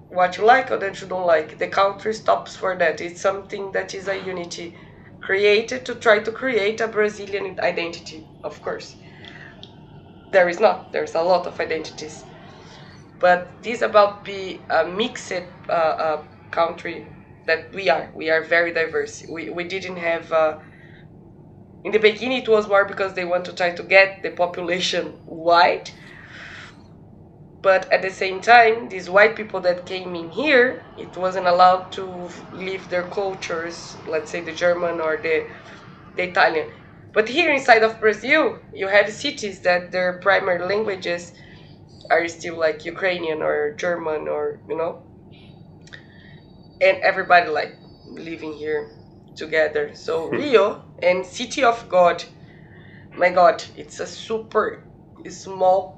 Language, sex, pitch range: English, female, 165-200 Hz